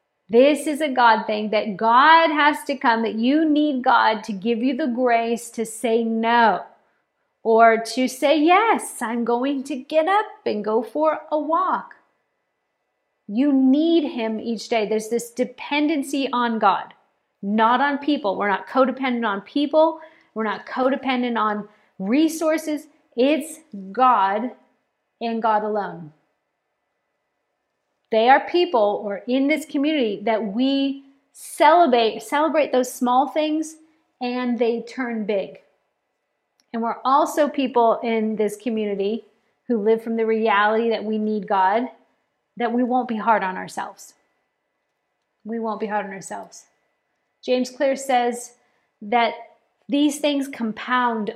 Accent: American